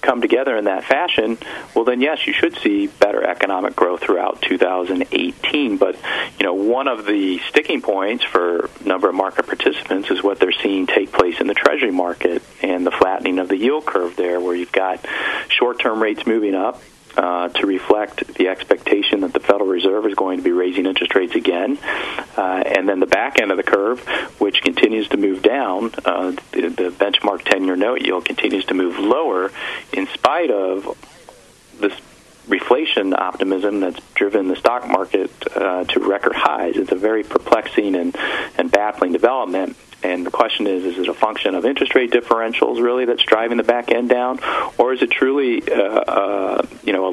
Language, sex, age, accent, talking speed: English, male, 40-59, American, 190 wpm